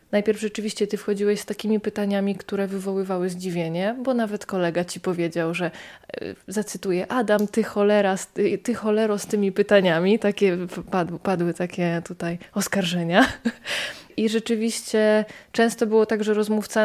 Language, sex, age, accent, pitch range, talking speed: Polish, female, 20-39, native, 190-220 Hz, 135 wpm